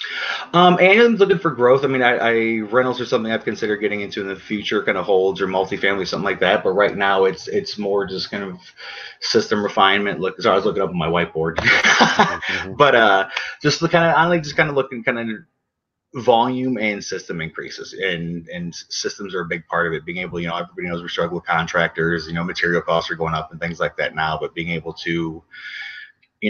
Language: English